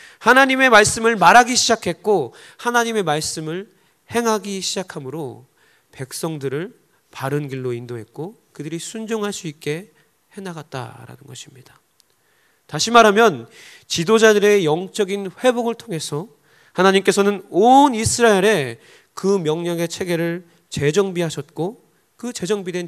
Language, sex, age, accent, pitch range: Korean, male, 30-49, native, 145-215 Hz